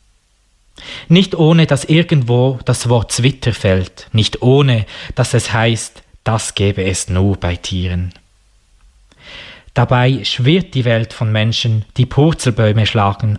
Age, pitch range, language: 20-39, 100-125 Hz, German